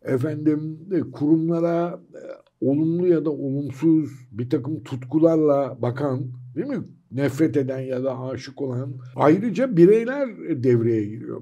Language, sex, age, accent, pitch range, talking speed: Turkish, male, 60-79, native, 125-155 Hz, 115 wpm